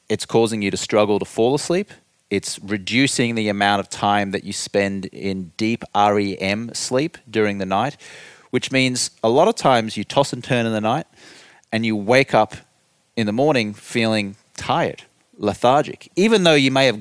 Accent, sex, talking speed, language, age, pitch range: Australian, male, 185 wpm, English, 30-49, 100-130 Hz